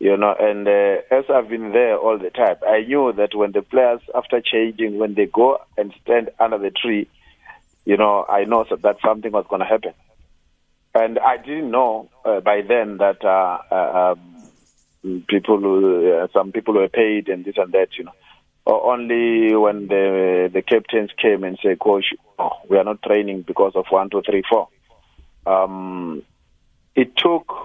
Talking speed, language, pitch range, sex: 180 wpm, English, 95-115 Hz, male